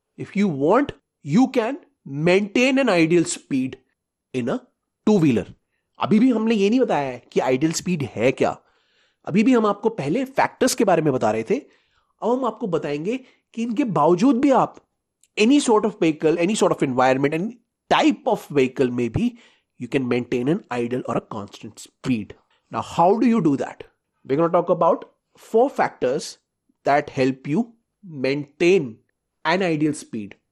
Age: 30-49